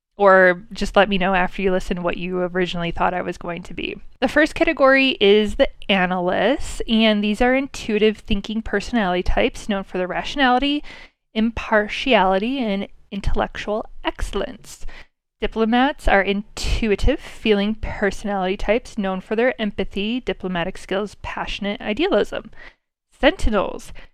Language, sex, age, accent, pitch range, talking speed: English, female, 20-39, American, 190-235 Hz, 130 wpm